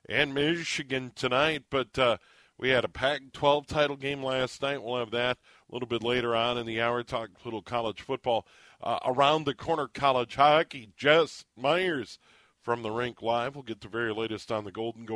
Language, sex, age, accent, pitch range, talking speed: English, male, 40-59, American, 120-165 Hz, 195 wpm